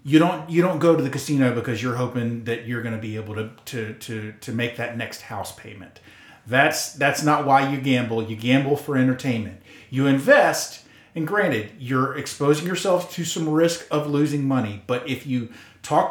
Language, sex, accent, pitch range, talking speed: English, male, American, 120-160 Hz, 200 wpm